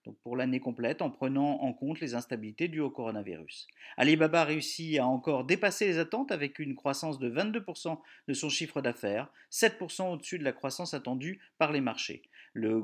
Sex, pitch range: male, 130-175 Hz